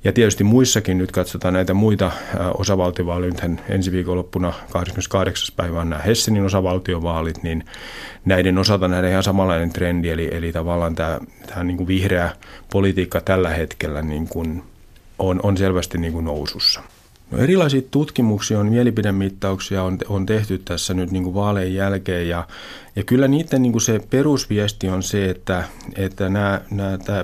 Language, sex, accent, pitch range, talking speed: Finnish, male, native, 90-110 Hz, 150 wpm